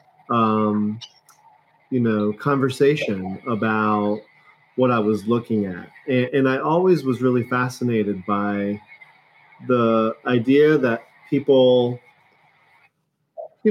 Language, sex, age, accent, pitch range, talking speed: English, male, 30-49, American, 110-135 Hz, 100 wpm